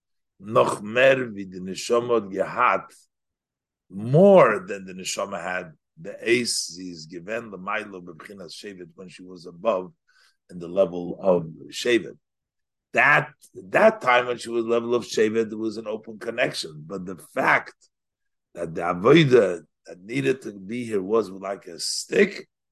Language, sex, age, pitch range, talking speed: English, male, 50-69, 90-115 Hz, 125 wpm